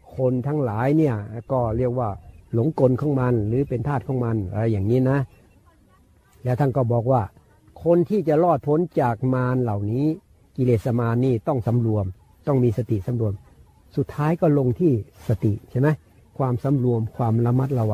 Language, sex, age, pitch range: Thai, male, 60-79, 110-150 Hz